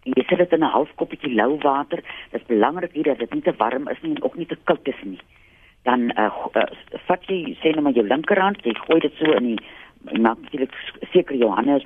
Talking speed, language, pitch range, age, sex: 245 wpm, Dutch, 130-195 Hz, 50-69, female